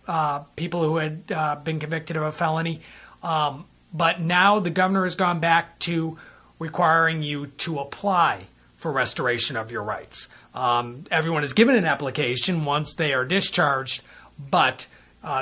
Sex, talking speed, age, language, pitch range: male, 155 wpm, 30-49, English, 135-170 Hz